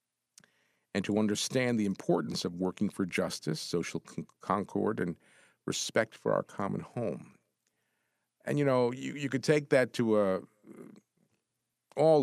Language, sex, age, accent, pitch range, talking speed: English, male, 50-69, American, 95-130 Hz, 140 wpm